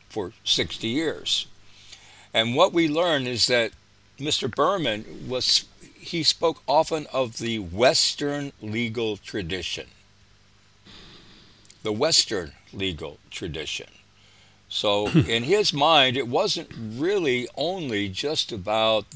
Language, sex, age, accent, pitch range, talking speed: English, male, 60-79, American, 100-130 Hz, 105 wpm